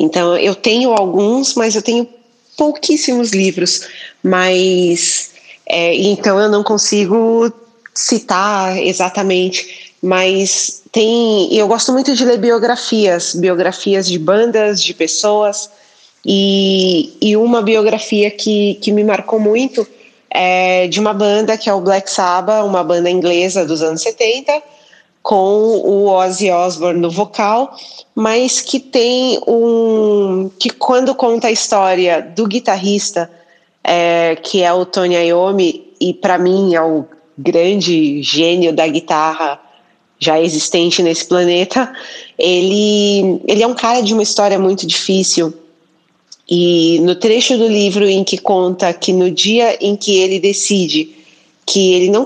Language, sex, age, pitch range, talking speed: Portuguese, female, 20-39, 180-225 Hz, 135 wpm